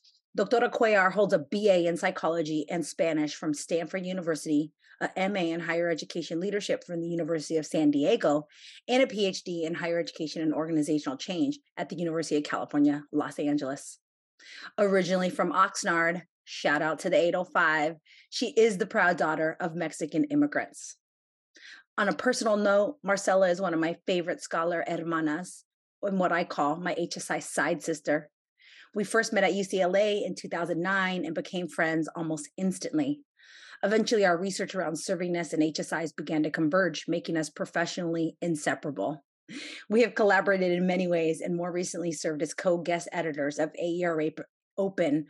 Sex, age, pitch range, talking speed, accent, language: female, 30-49, 160-195 Hz, 155 wpm, American, English